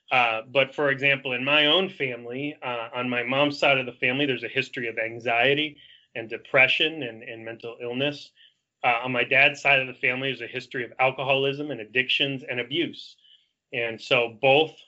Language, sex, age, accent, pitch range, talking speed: English, male, 30-49, American, 120-140 Hz, 190 wpm